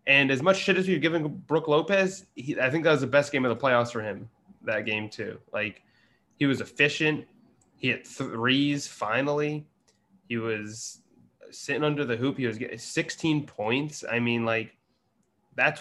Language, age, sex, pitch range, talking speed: English, 20-39, male, 115-145 Hz, 185 wpm